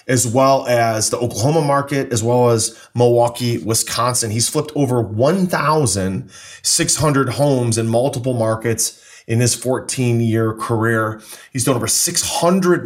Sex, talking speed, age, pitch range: male, 125 wpm, 30-49, 115-135 Hz